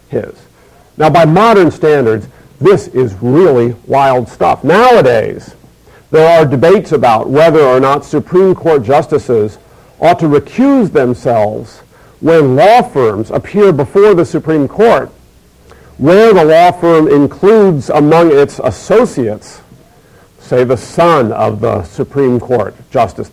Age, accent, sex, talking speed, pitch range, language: 50-69, American, male, 125 wpm, 120-165 Hz, English